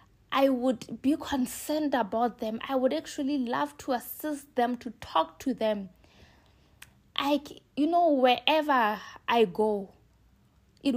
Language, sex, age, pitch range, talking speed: English, female, 20-39, 210-260 Hz, 130 wpm